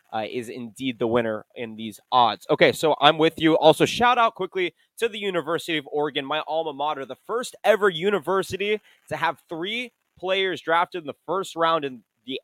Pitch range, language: 120-150 Hz, English